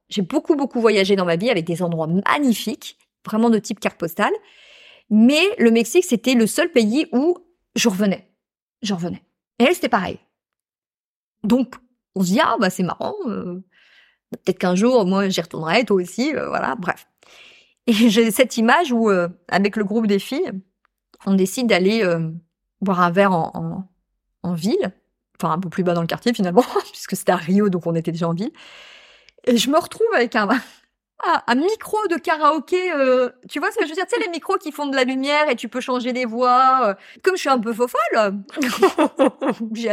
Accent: French